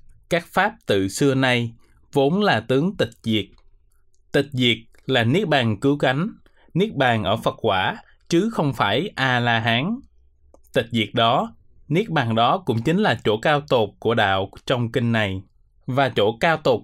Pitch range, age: 110-145 Hz, 20-39